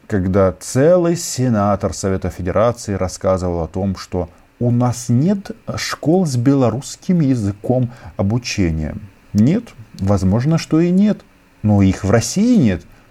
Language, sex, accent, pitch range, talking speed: Russian, male, native, 95-135 Hz, 125 wpm